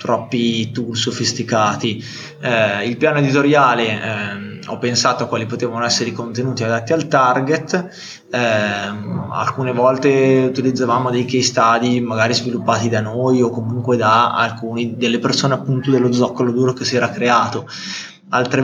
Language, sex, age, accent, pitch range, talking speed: Italian, male, 20-39, native, 120-140 Hz, 145 wpm